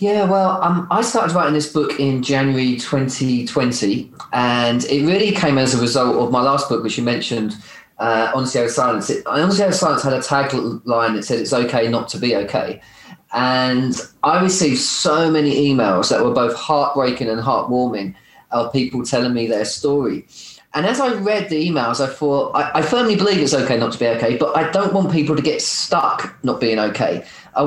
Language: English